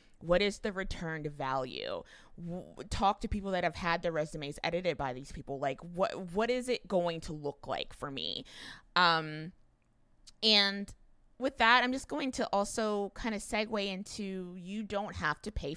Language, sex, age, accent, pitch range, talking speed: English, female, 20-39, American, 155-200 Hz, 175 wpm